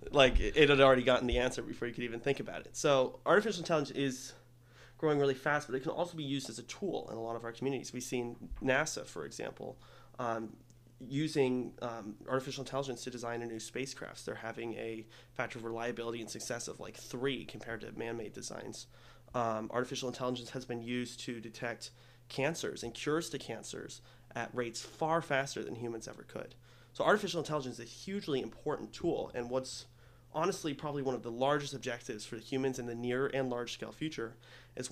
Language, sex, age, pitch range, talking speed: English, male, 30-49, 115-135 Hz, 195 wpm